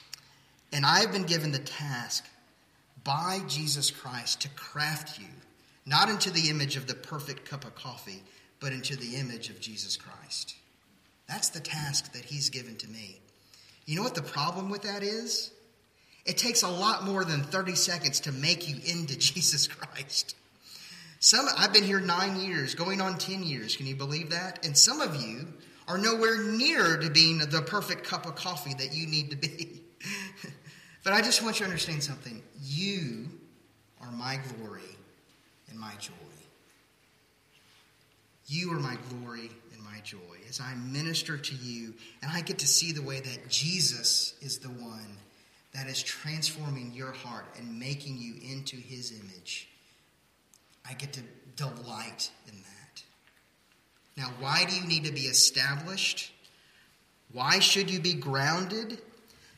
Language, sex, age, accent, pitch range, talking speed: English, male, 30-49, American, 125-175 Hz, 160 wpm